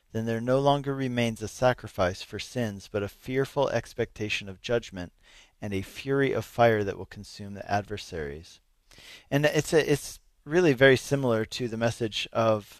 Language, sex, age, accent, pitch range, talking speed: English, male, 40-59, American, 100-125 Hz, 170 wpm